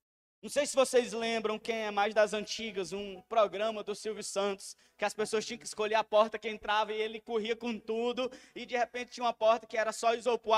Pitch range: 220-270 Hz